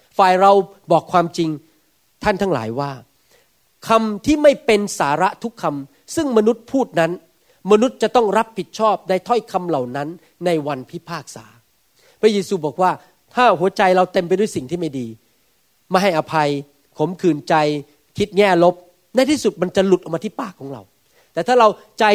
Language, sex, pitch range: Thai, male, 160-215 Hz